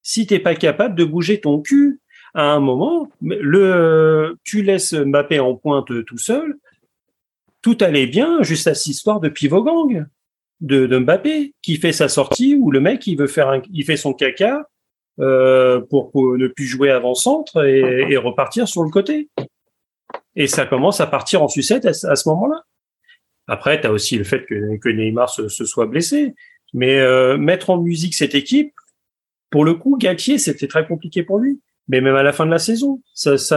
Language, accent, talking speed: French, French, 200 wpm